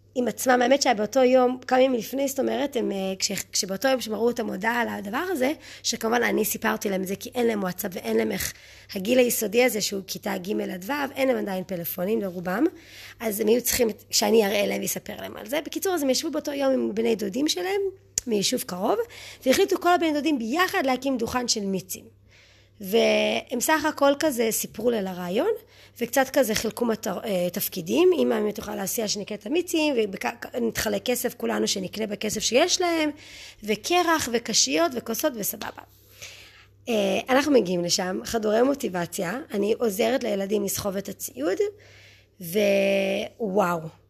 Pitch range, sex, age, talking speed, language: 195-270 Hz, female, 20-39, 160 wpm, Hebrew